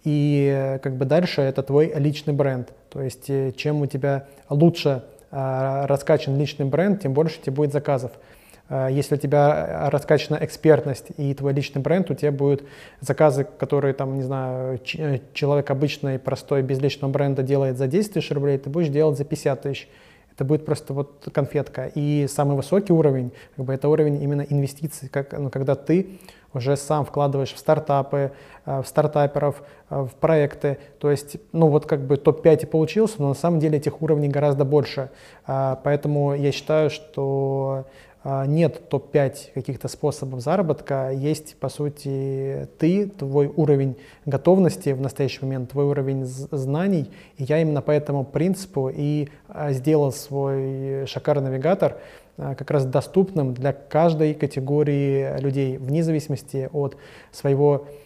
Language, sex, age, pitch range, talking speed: Russian, male, 20-39, 135-150 Hz, 155 wpm